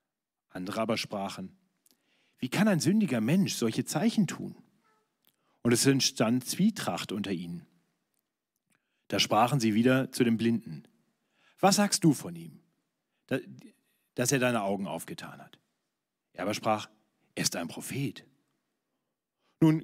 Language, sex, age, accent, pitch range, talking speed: German, male, 40-59, German, 115-195 Hz, 130 wpm